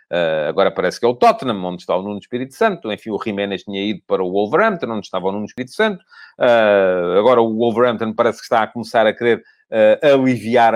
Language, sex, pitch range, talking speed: Portuguese, male, 115-165 Hz, 205 wpm